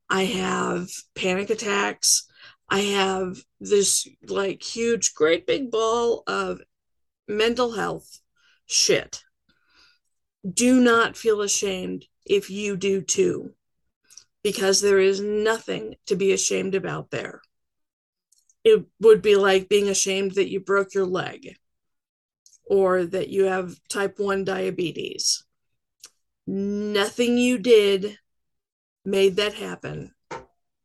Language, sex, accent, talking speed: English, female, American, 110 wpm